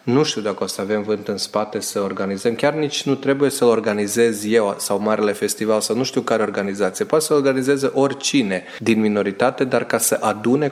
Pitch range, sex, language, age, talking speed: 115-145 Hz, male, Romanian, 30-49, 200 wpm